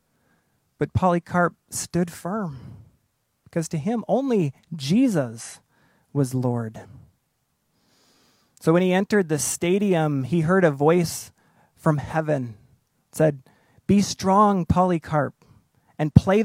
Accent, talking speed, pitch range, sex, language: American, 105 wpm, 140-190 Hz, male, English